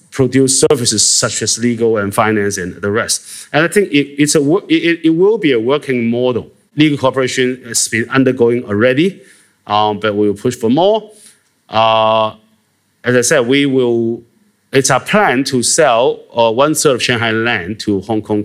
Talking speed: 180 wpm